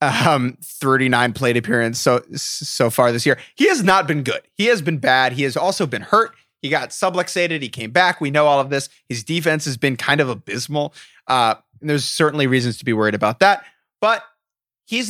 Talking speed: 210 wpm